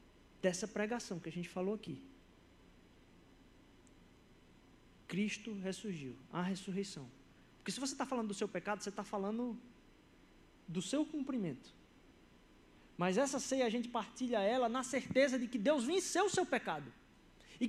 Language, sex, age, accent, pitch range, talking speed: Portuguese, male, 20-39, Brazilian, 230-315 Hz, 145 wpm